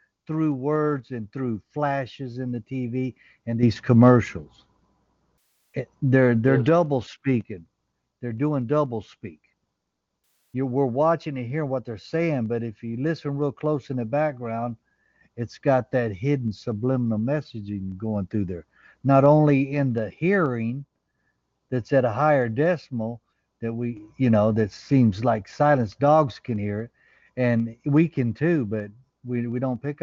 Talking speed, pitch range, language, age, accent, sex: 155 wpm, 115-140 Hz, English, 60-79, American, male